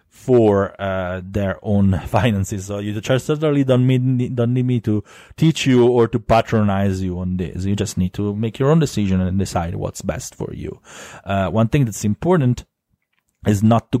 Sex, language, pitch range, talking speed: male, English, 95-115 Hz, 185 wpm